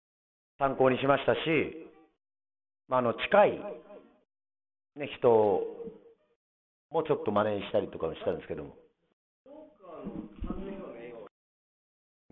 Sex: male